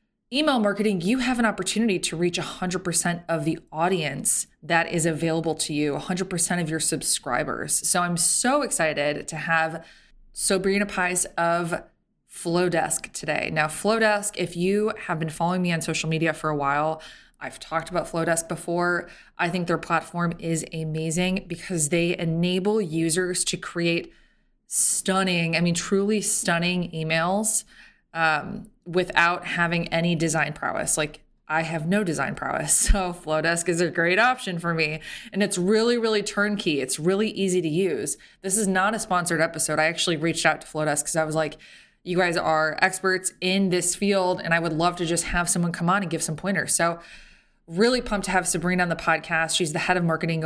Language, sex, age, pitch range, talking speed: English, female, 20-39, 160-185 Hz, 180 wpm